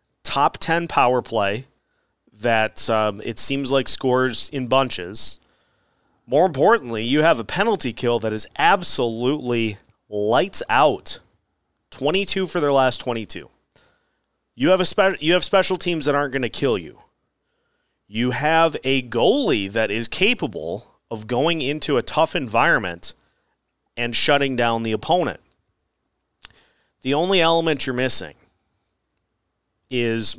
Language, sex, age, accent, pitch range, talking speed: English, male, 30-49, American, 115-145 Hz, 130 wpm